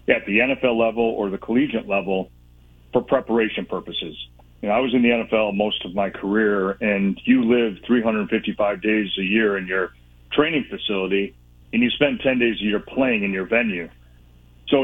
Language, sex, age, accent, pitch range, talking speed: English, male, 40-59, American, 95-115 Hz, 180 wpm